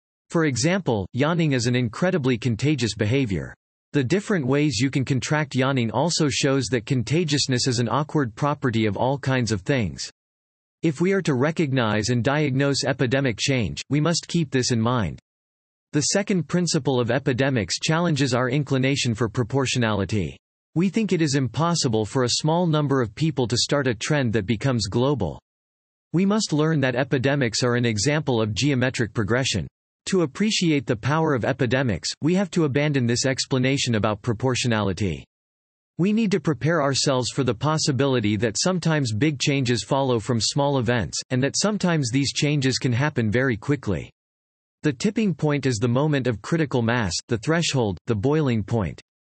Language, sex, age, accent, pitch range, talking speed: English, male, 40-59, American, 120-150 Hz, 165 wpm